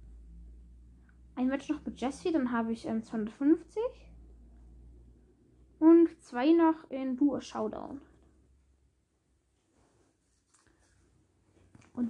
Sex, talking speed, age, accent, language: female, 85 wpm, 10-29, German, German